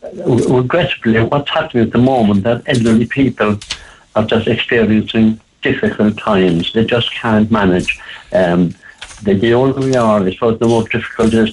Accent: British